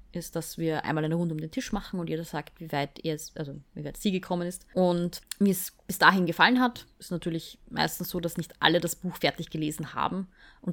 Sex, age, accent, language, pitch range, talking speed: female, 20-39, German, German, 160-200 Hz, 240 wpm